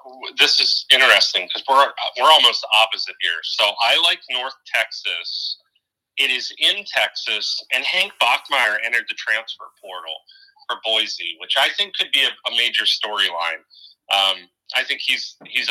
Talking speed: 160 wpm